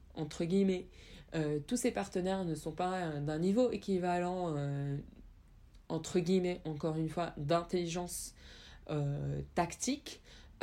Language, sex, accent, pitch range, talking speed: French, female, French, 160-210 Hz, 125 wpm